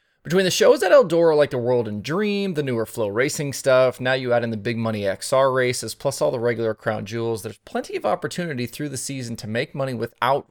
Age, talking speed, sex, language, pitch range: 30-49, 235 wpm, male, English, 115-155 Hz